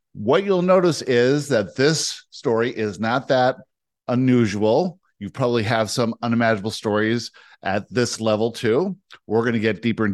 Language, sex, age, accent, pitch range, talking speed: English, male, 50-69, American, 100-130 Hz, 160 wpm